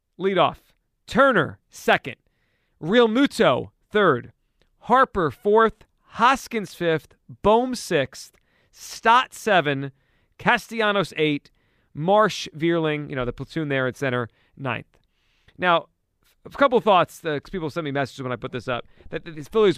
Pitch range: 145-215 Hz